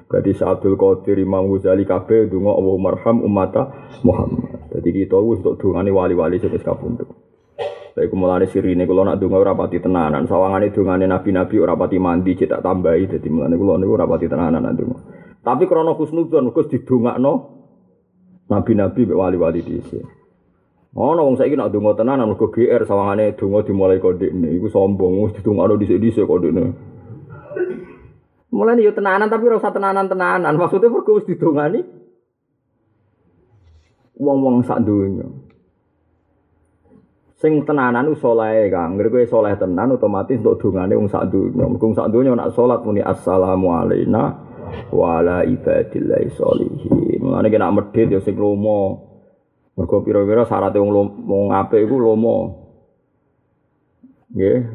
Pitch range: 95-135 Hz